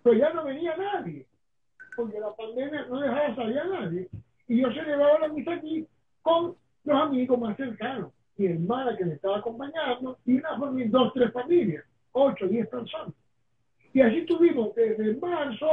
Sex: male